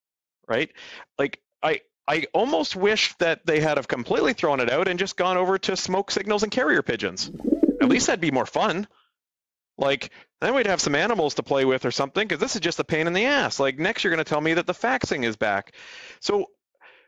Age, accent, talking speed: 40-59, American, 220 wpm